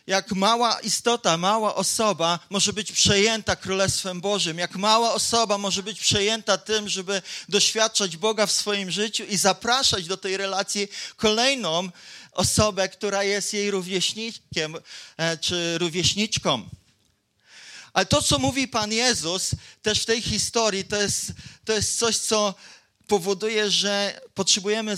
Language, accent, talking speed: Polish, native, 130 wpm